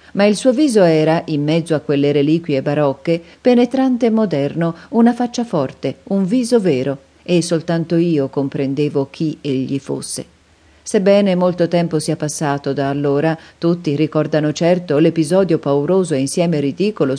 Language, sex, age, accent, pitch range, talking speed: Italian, female, 40-59, native, 150-185 Hz, 145 wpm